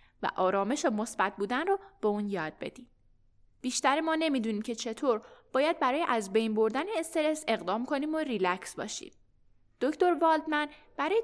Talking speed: 155 wpm